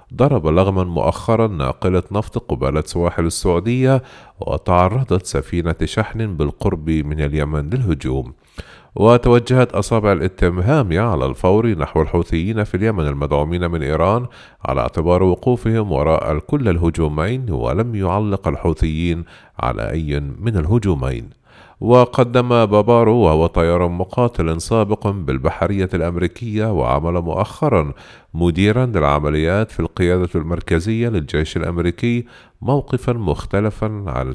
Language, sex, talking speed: Arabic, male, 105 wpm